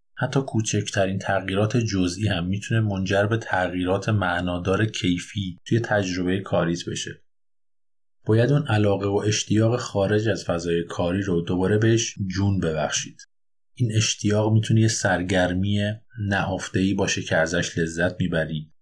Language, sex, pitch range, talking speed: Persian, male, 90-110 Hz, 125 wpm